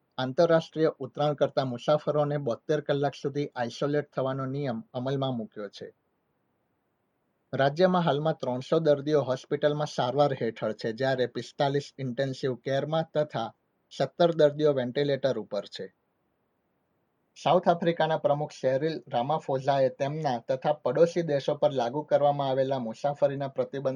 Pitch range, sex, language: 130-155 Hz, male, Gujarati